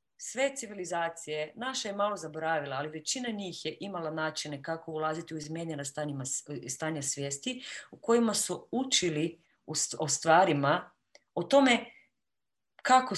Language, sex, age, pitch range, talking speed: Croatian, female, 30-49, 150-200 Hz, 130 wpm